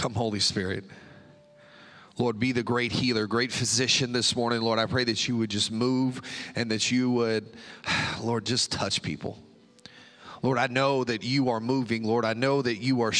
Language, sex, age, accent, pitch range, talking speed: English, male, 30-49, American, 115-135 Hz, 185 wpm